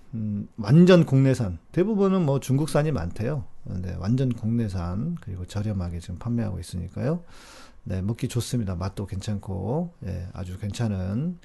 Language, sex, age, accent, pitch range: Korean, male, 40-59, native, 100-145 Hz